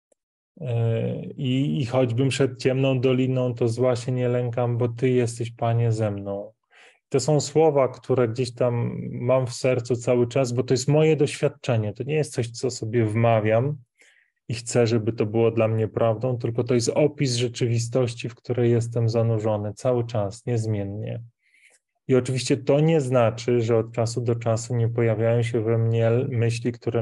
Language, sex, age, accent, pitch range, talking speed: Polish, male, 20-39, native, 115-125 Hz, 175 wpm